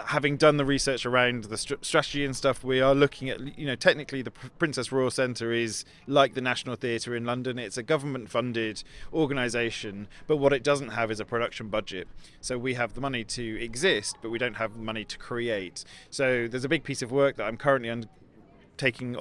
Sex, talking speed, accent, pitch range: male, 210 wpm, British, 115-135 Hz